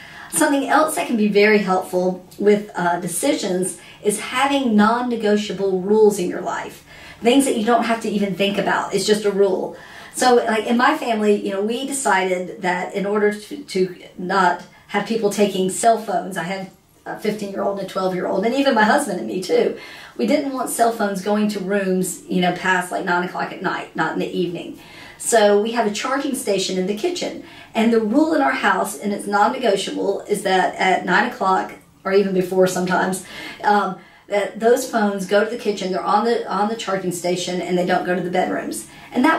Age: 40-59